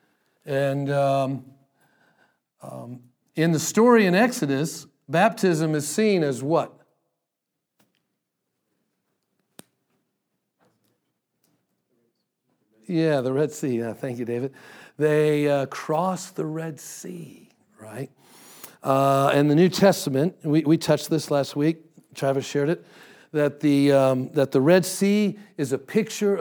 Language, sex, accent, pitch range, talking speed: English, male, American, 140-195 Hz, 120 wpm